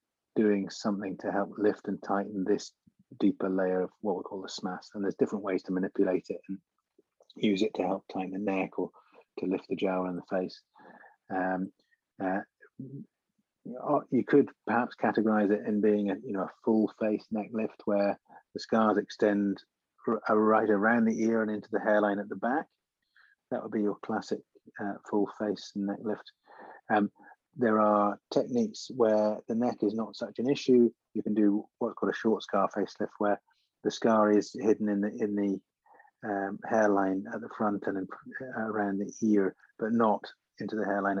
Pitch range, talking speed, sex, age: 95-105 Hz, 185 wpm, male, 30-49